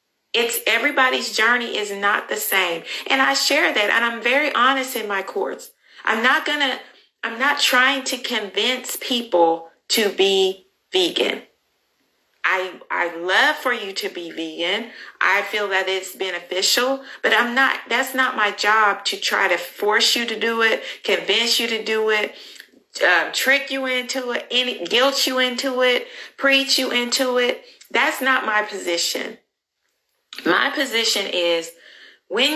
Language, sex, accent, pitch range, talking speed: English, female, American, 185-260 Hz, 155 wpm